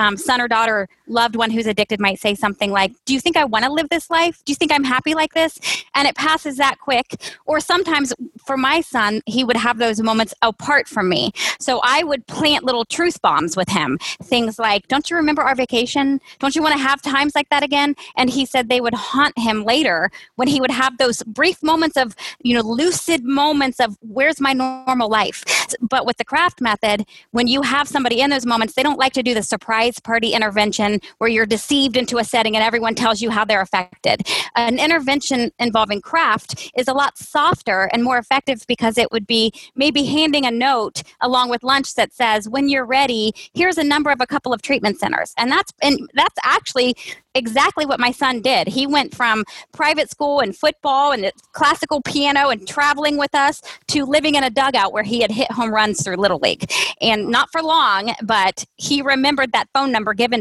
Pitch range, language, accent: 225-285 Hz, English, American